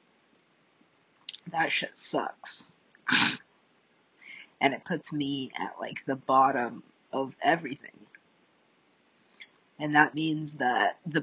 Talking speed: 95 wpm